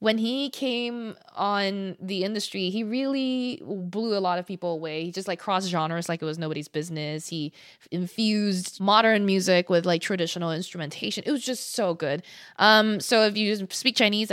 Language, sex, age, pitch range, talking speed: English, female, 20-39, 175-235 Hz, 180 wpm